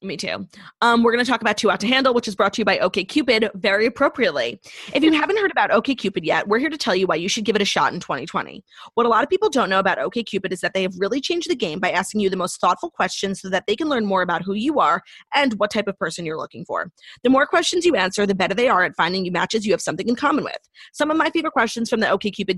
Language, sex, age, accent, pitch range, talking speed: English, female, 20-39, American, 190-255 Hz, 305 wpm